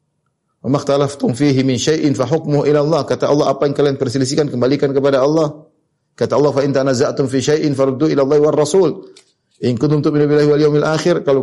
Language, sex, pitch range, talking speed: Indonesian, male, 140-185 Hz, 165 wpm